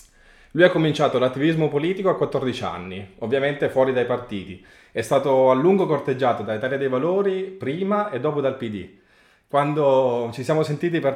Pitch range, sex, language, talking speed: 110-150 Hz, male, Italian, 160 wpm